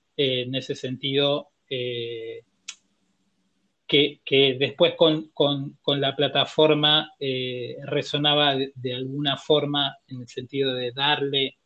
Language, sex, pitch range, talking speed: Spanish, male, 125-145 Hz, 120 wpm